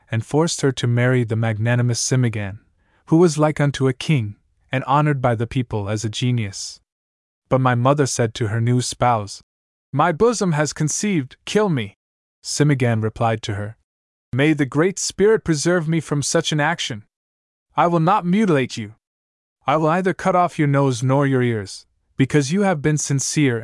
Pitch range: 110-150 Hz